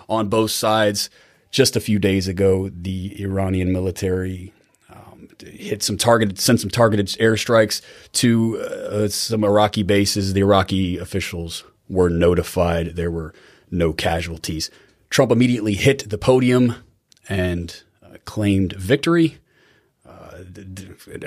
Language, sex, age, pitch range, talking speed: English, male, 30-49, 90-110 Hz, 120 wpm